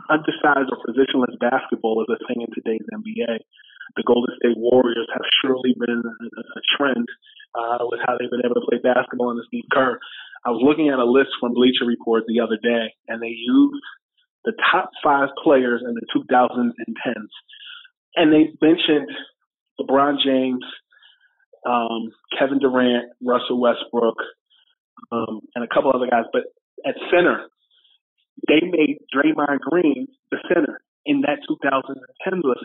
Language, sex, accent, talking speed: English, male, American, 155 wpm